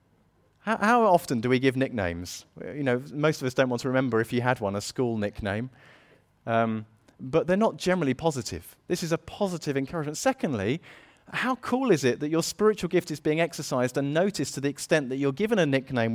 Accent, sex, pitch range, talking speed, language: British, male, 115-180 Hz, 205 wpm, English